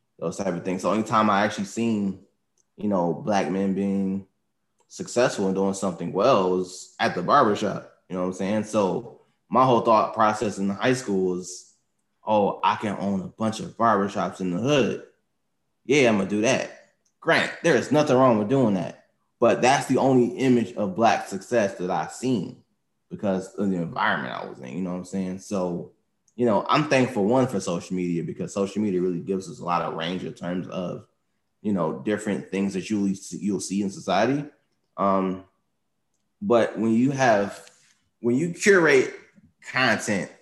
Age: 20-39